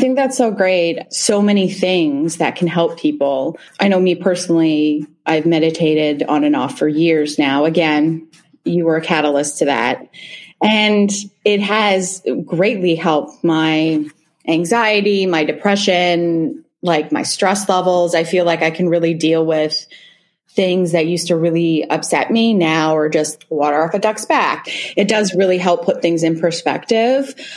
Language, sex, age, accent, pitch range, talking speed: English, female, 30-49, American, 160-200 Hz, 165 wpm